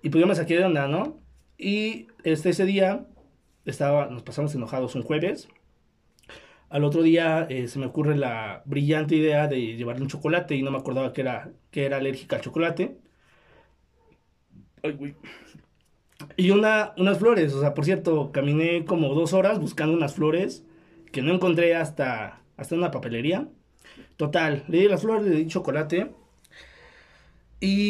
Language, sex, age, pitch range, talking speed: English, male, 20-39, 140-180 Hz, 160 wpm